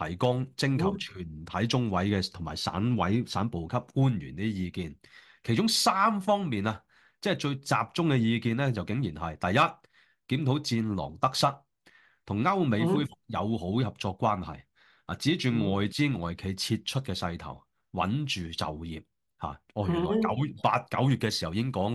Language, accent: Chinese, native